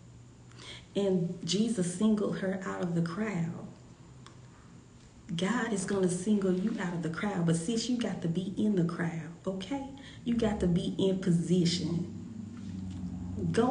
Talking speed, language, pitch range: 155 wpm, English, 170-225 Hz